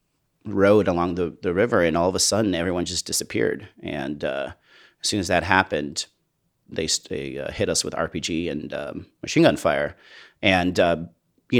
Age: 30-49